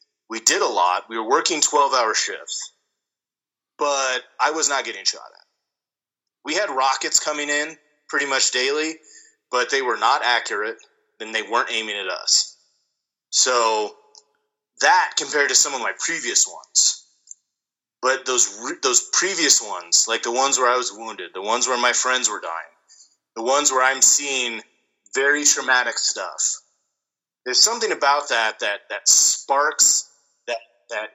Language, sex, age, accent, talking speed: English, male, 30-49, American, 150 wpm